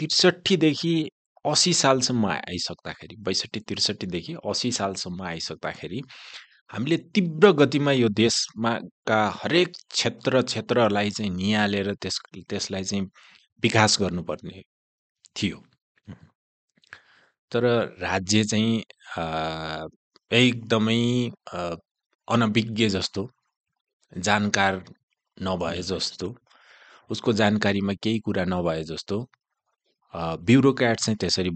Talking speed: 80 wpm